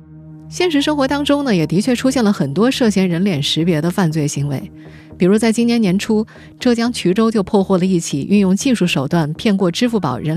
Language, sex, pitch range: Chinese, female, 155-230 Hz